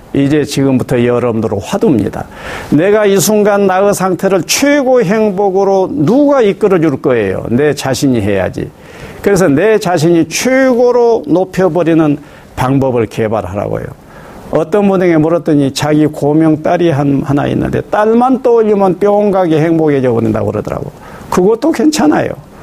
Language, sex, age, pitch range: Korean, male, 50-69, 125-195 Hz